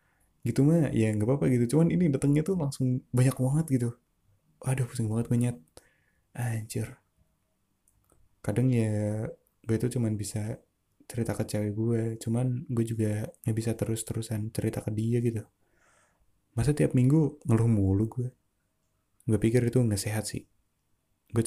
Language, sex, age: Indonesian, male, 20-39